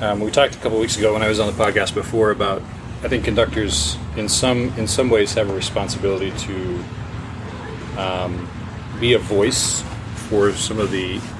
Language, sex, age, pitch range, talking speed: English, male, 30-49, 95-115 Hz, 190 wpm